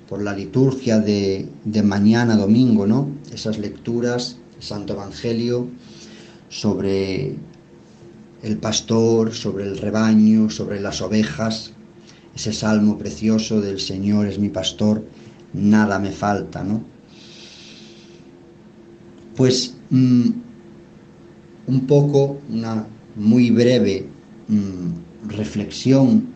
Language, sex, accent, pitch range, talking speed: Spanish, male, Spanish, 100-115 Hz, 100 wpm